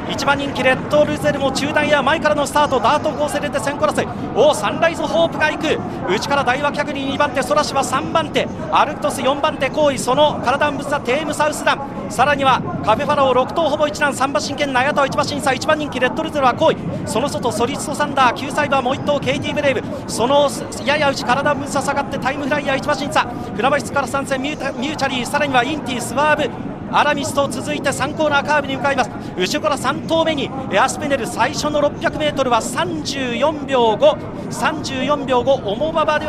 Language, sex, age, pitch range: Japanese, male, 40-59, 265-295 Hz